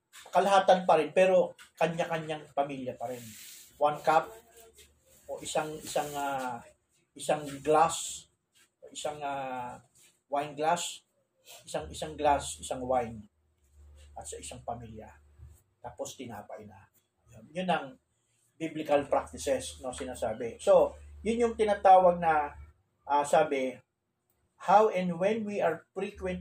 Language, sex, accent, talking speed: Filipino, male, native, 120 wpm